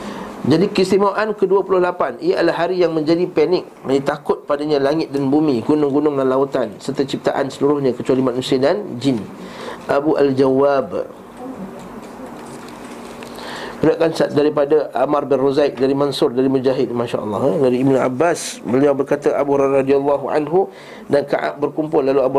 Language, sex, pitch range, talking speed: Malay, male, 135-170 Hz, 135 wpm